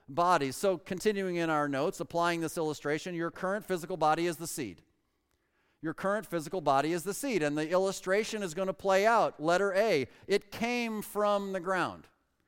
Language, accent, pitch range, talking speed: English, American, 145-185 Hz, 180 wpm